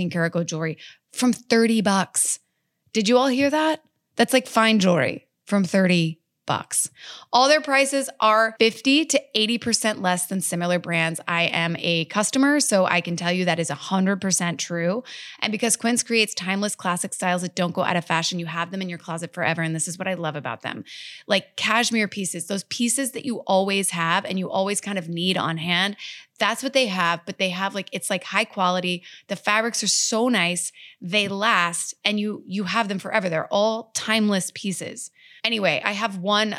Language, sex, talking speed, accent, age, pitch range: English, female, 200 wpm, American, 20-39, 170-215 Hz